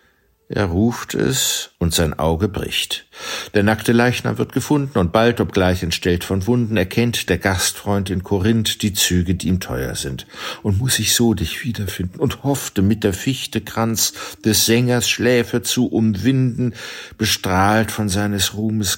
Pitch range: 95-120 Hz